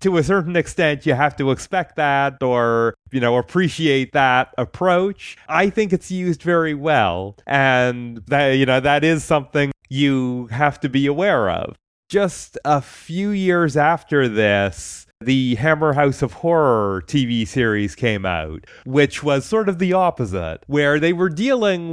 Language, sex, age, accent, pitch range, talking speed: English, male, 30-49, American, 120-155 Hz, 160 wpm